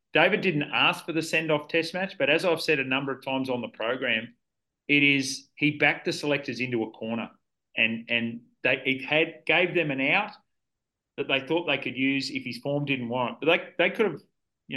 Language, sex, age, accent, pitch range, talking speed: English, male, 30-49, Australian, 115-150 Hz, 220 wpm